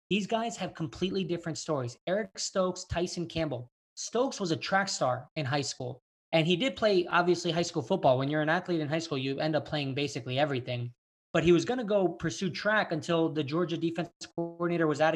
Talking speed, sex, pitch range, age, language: 215 wpm, male, 150-175 Hz, 20-39, English